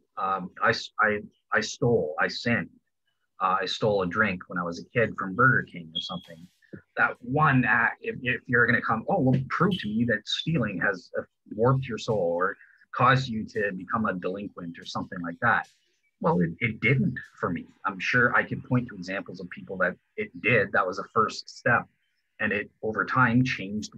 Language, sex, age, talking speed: English, male, 30-49, 205 wpm